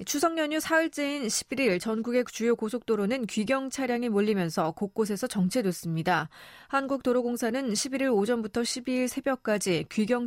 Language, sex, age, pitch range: Korean, female, 30-49, 195-255 Hz